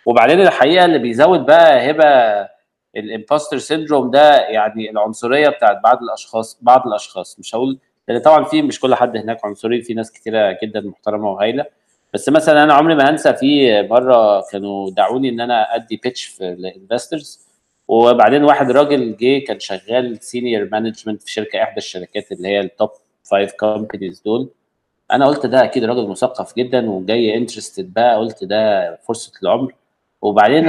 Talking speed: 160 wpm